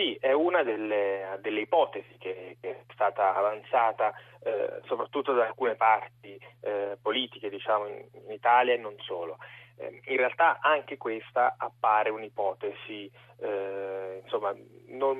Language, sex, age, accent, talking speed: Italian, male, 30-49, native, 135 wpm